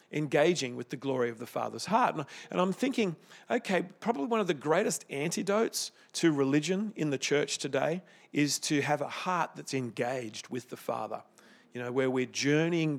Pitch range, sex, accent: 140-175 Hz, male, Australian